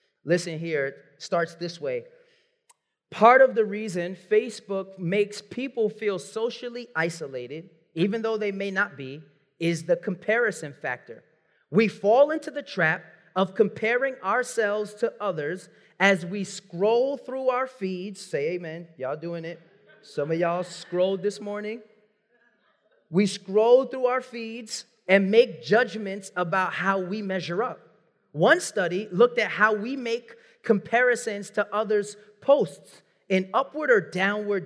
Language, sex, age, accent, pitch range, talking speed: English, male, 30-49, American, 180-230 Hz, 140 wpm